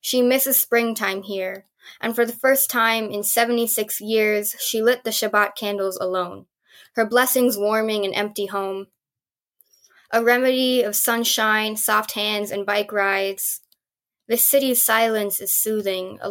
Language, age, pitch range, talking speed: English, 10-29, 200-230 Hz, 145 wpm